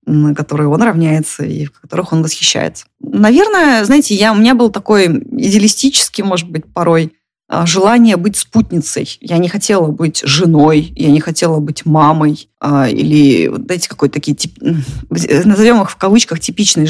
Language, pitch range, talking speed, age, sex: Russian, 160-220 Hz, 160 wpm, 20-39, female